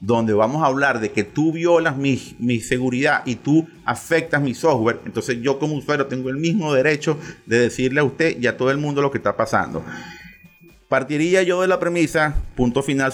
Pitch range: 115-145 Hz